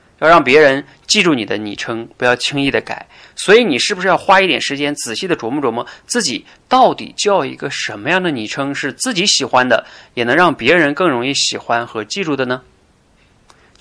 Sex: male